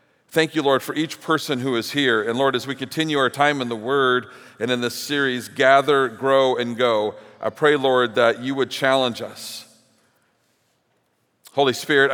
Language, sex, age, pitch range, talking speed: English, male, 40-59, 115-145 Hz, 185 wpm